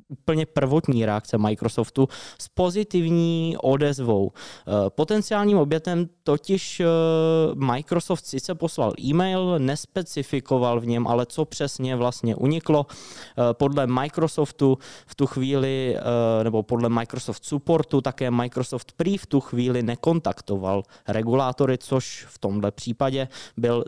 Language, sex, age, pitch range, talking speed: Czech, male, 20-39, 115-150 Hz, 110 wpm